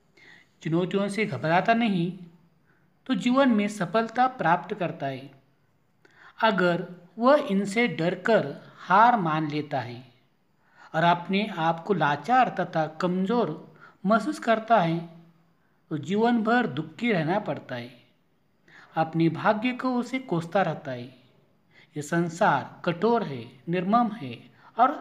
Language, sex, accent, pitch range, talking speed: Marathi, male, native, 160-220 Hz, 120 wpm